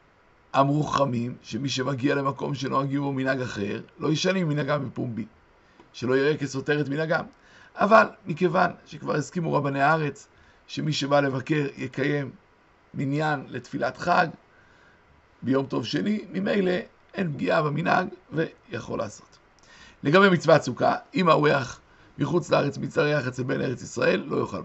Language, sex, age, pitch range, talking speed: Hebrew, male, 60-79, 140-180 Hz, 130 wpm